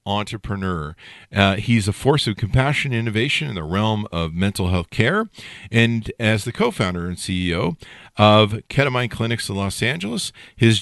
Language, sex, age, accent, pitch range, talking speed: English, male, 50-69, American, 100-130 Hz, 155 wpm